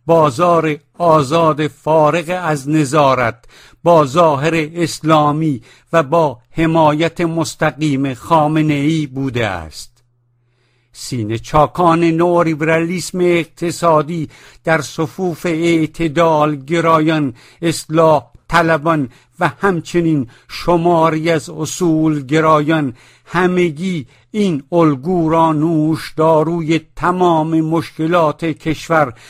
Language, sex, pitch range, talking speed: English, male, 145-170 Hz, 80 wpm